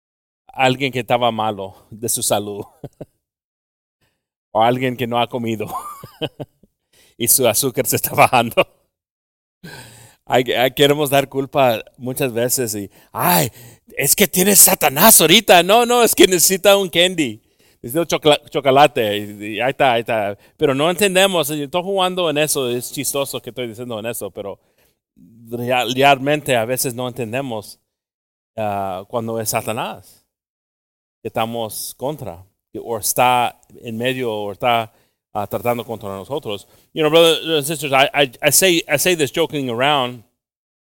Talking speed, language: 120 wpm, English